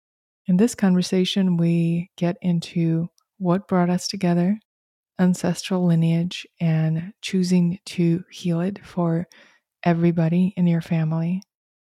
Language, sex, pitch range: English, female, 170-185 Hz